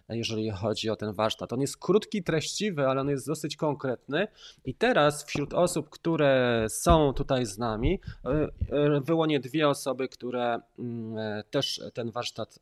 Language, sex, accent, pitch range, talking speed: Polish, male, native, 120-150 Hz, 145 wpm